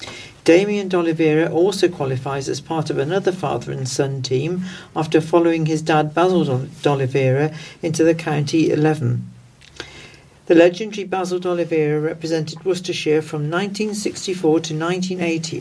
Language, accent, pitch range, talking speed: English, British, 155-185 Hz, 125 wpm